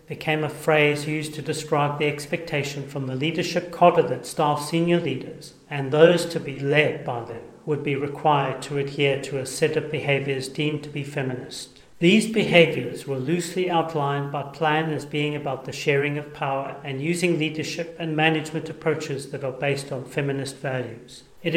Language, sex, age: English, male, 40-59